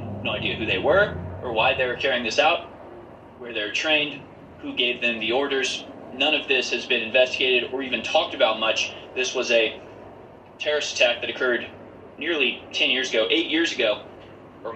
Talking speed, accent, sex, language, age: 190 wpm, American, male, English, 20-39